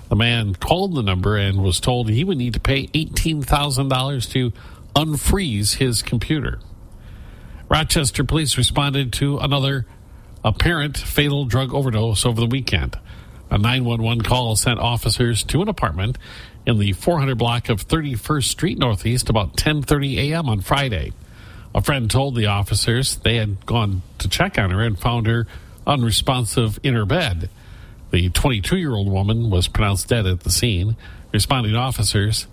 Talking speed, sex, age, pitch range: 155 wpm, male, 50-69, 100-130 Hz